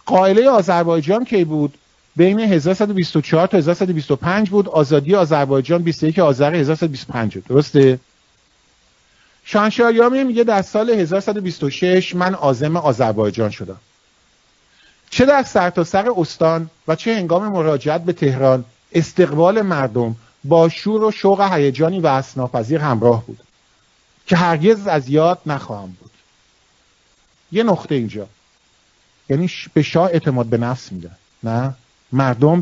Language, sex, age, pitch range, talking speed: English, male, 50-69, 130-190 Hz, 125 wpm